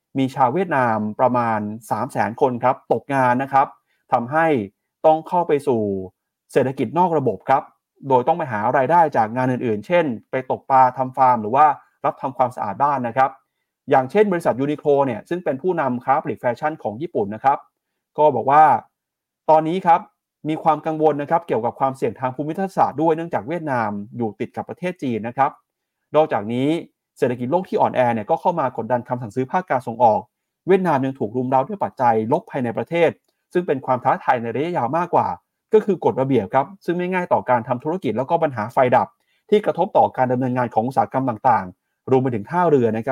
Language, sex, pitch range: Thai, male, 125-160 Hz